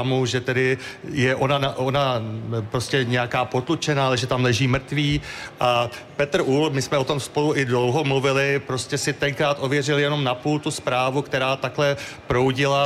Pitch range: 125-140 Hz